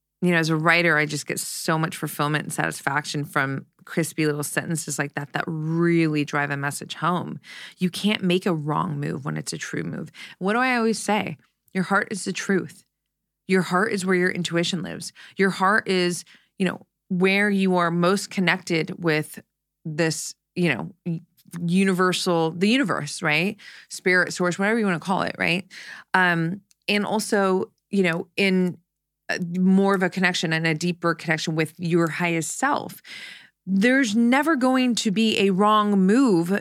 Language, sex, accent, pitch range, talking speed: English, female, American, 165-200 Hz, 175 wpm